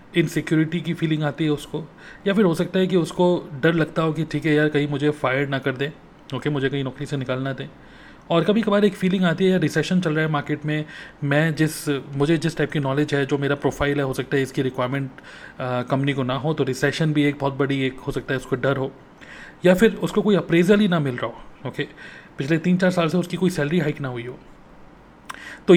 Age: 30-49